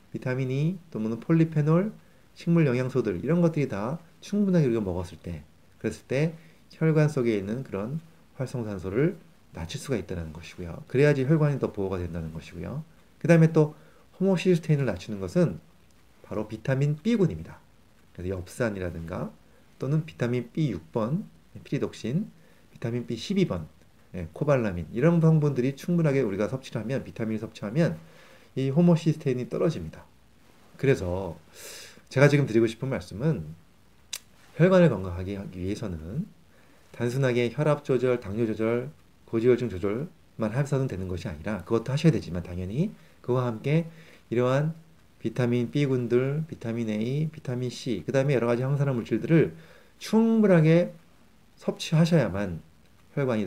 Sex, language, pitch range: male, Korean, 100-160 Hz